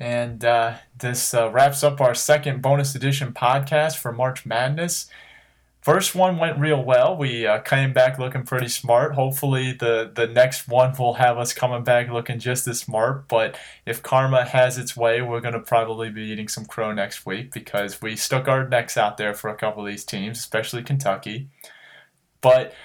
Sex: male